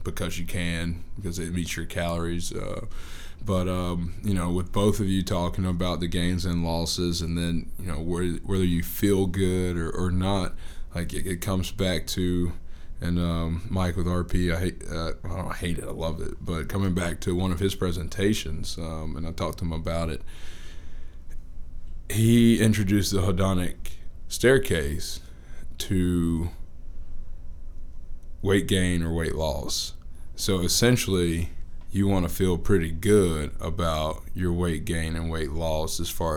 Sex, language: male, English